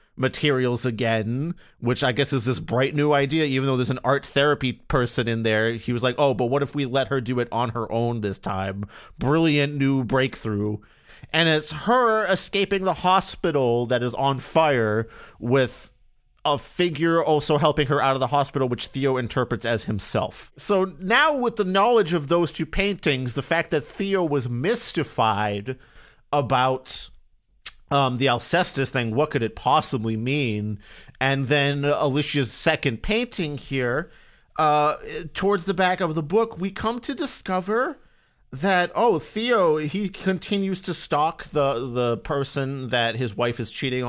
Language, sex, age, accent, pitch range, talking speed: English, male, 30-49, American, 125-160 Hz, 165 wpm